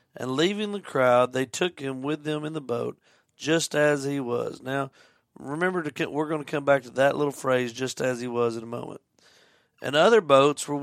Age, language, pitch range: 40-59, English, 125-155 Hz